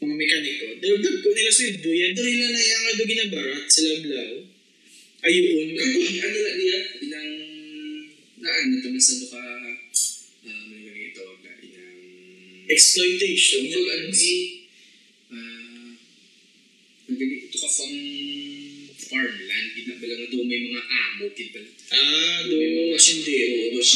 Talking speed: 65 wpm